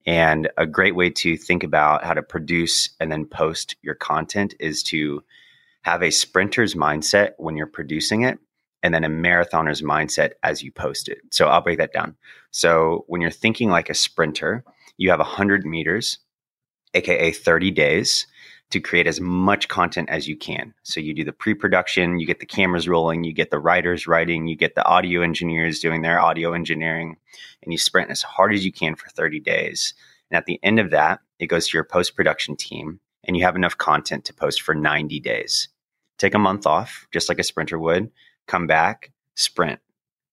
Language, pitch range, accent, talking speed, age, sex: English, 80-90 Hz, American, 195 wpm, 30-49, male